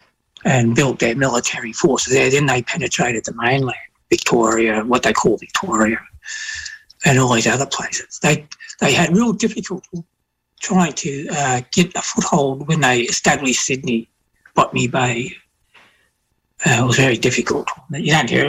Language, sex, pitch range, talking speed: English, male, 140-205 Hz, 150 wpm